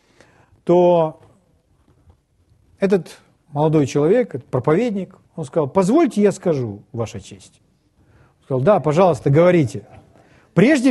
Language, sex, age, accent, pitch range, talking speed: Russian, male, 40-59, native, 155-210 Hz, 105 wpm